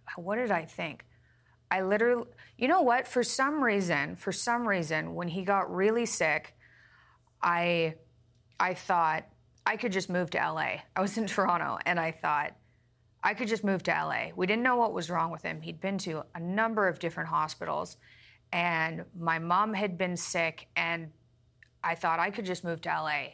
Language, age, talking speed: English, 30-49, 190 wpm